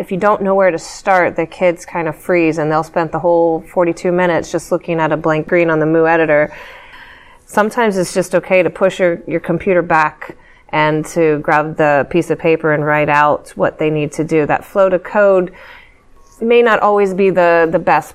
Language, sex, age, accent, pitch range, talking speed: English, female, 30-49, American, 155-185 Hz, 215 wpm